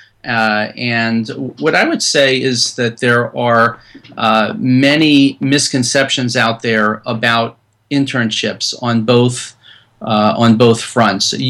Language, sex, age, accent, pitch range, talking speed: English, male, 40-59, American, 115-135 Hz, 120 wpm